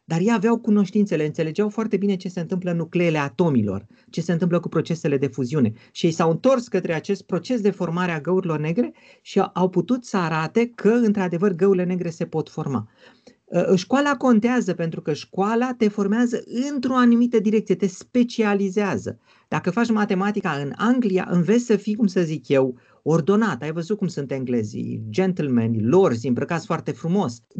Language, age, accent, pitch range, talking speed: Romanian, 30-49, native, 150-210 Hz, 170 wpm